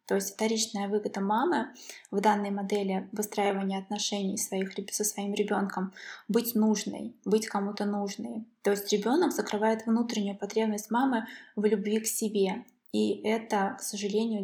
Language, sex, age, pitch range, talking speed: Russian, female, 20-39, 205-225 Hz, 140 wpm